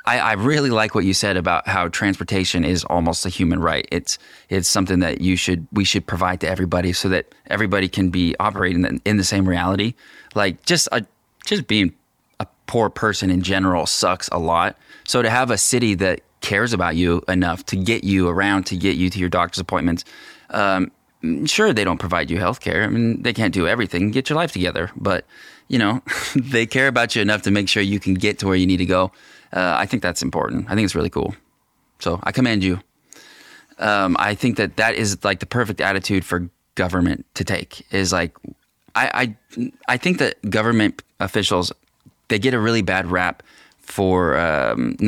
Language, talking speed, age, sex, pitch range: English, 205 wpm, 20-39, male, 90-110 Hz